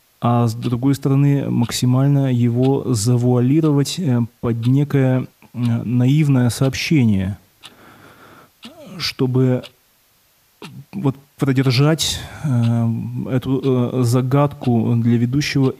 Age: 20-39